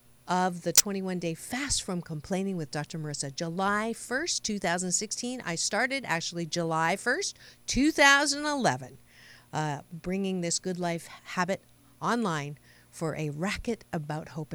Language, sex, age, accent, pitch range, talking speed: English, female, 50-69, American, 165-215 Hz, 130 wpm